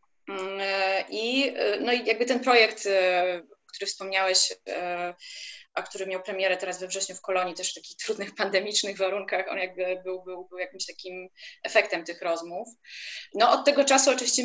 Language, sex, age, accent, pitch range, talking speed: Polish, female, 20-39, native, 185-200 Hz, 155 wpm